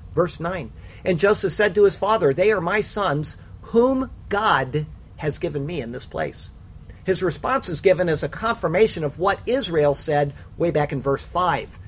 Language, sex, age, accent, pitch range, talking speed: English, male, 50-69, American, 135-190 Hz, 180 wpm